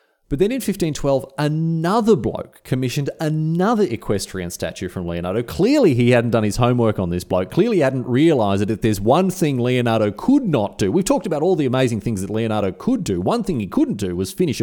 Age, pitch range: 30-49, 95-145 Hz